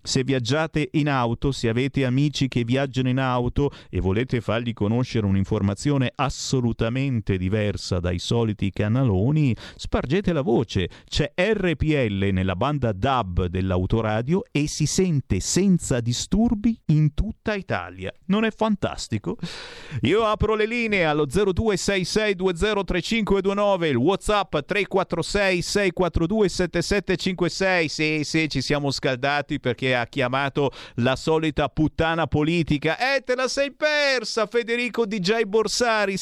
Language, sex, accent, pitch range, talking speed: Italian, male, native, 125-195 Hz, 120 wpm